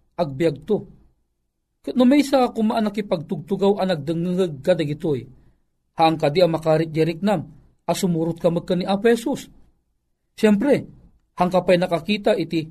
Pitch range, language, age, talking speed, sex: 155-235 Hz, Filipino, 40-59, 130 wpm, male